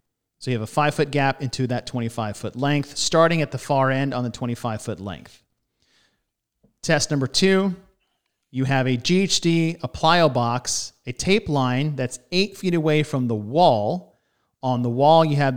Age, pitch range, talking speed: 40-59, 120-160 Hz, 180 wpm